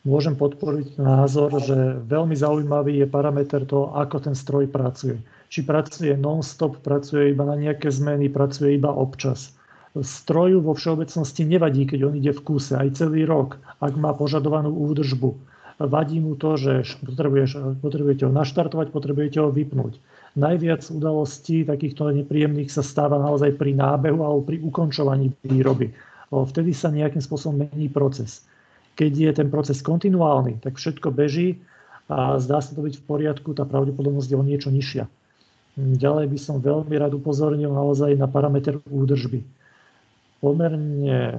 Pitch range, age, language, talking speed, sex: 140-155 Hz, 40-59, Slovak, 150 wpm, male